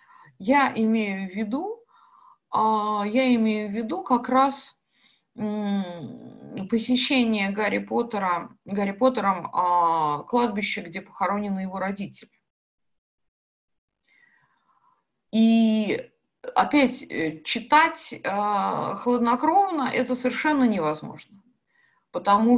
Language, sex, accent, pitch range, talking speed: Russian, female, native, 210-270 Hz, 65 wpm